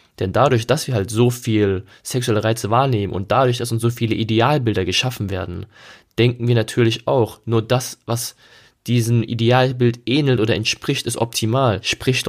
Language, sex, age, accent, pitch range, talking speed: German, male, 20-39, German, 105-120 Hz, 165 wpm